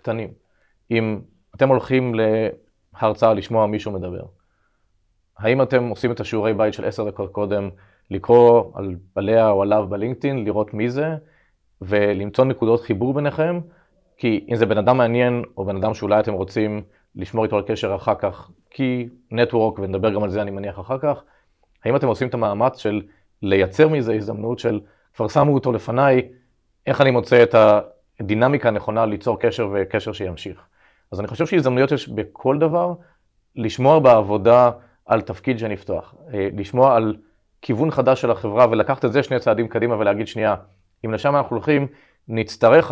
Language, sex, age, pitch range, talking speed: Hebrew, male, 30-49, 105-125 Hz, 160 wpm